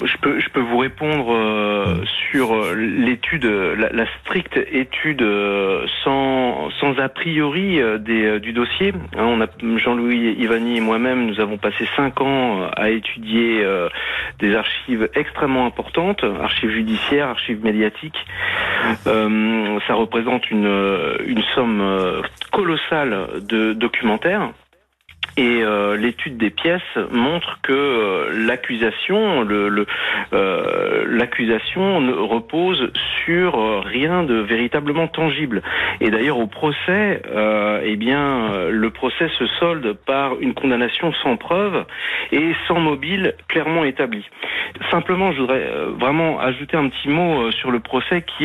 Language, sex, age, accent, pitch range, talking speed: French, male, 40-59, French, 110-155 Hz, 140 wpm